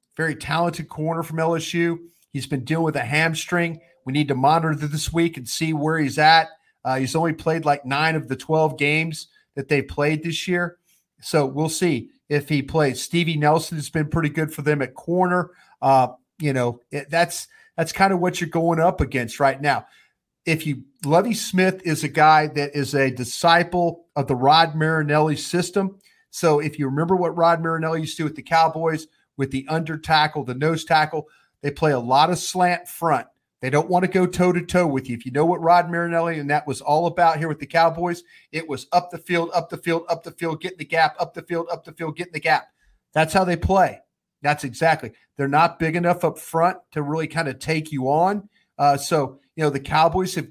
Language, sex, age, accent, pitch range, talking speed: English, male, 40-59, American, 145-170 Hz, 220 wpm